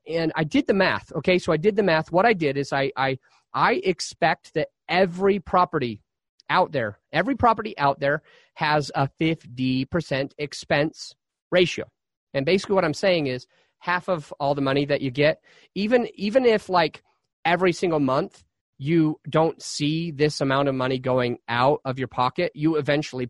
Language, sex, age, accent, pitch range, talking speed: English, male, 30-49, American, 125-160 Hz, 175 wpm